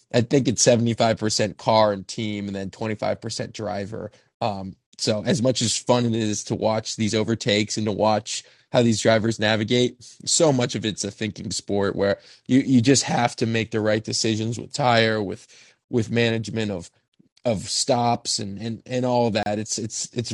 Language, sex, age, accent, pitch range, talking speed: English, male, 20-39, American, 110-130 Hz, 200 wpm